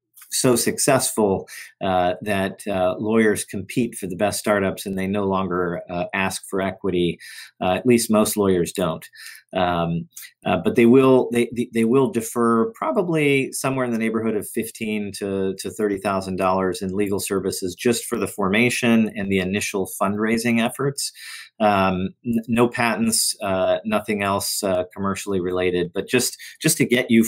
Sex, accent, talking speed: male, American, 160 wpm